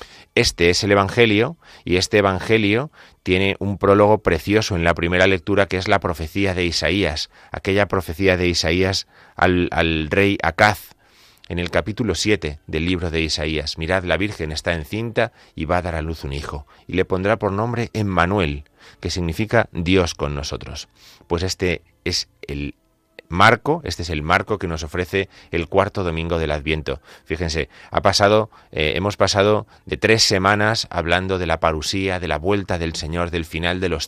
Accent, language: Spanish, Spanish